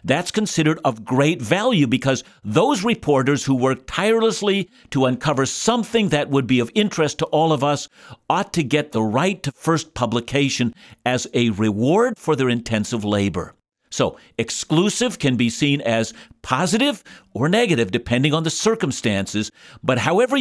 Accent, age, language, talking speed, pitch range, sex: American, 50-69, English, 155 wpm, 125-180 Hz, male